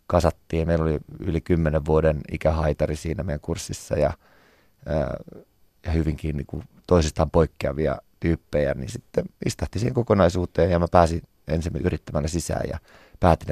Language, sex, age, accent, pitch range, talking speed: Finnish, male, 30-49, native, 80-95 Hz, 135 wpm